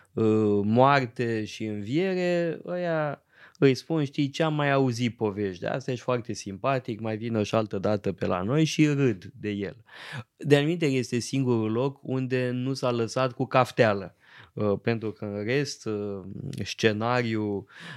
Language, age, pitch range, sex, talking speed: Romanian, 20-39, 105-140 Hz, male, 145 wpm